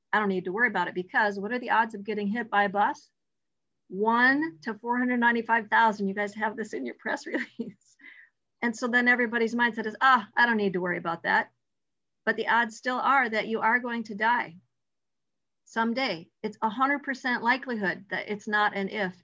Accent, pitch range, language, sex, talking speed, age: American, 185-230 Hz, English, female, 205 wpm, 40-59